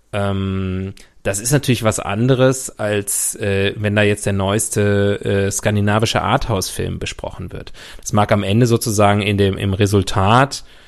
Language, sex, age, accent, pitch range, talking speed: German, male, 30-49, German, 100-120 Hz, 150 wpm